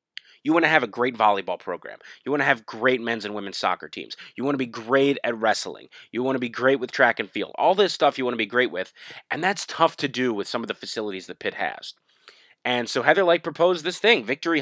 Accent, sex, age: American, male, 20-39